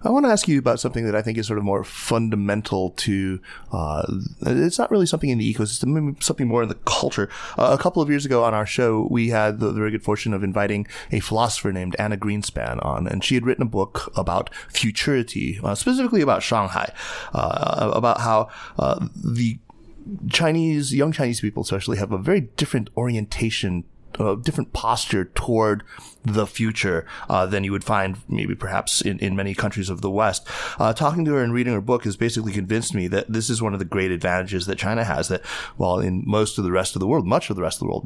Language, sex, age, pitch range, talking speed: English, male, 30-49, 95-120 Hz, 220 wpm